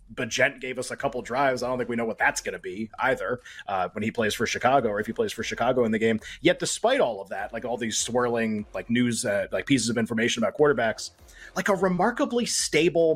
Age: 30-49